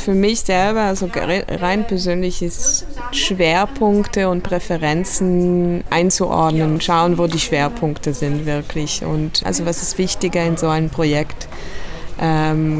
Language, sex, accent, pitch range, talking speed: German, female, German, 160-185 Hz, 125 wpm